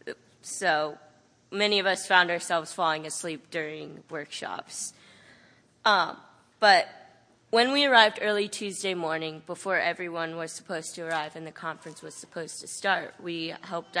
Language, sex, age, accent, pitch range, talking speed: English, female, 20-39, American, 160-190 Hz, 140 wpm